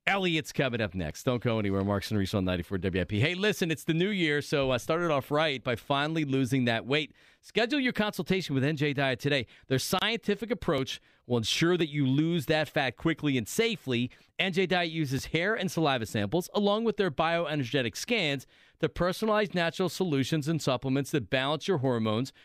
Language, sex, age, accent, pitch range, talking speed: English, male, 40-59, American, 125-180 Hz, 185 wpm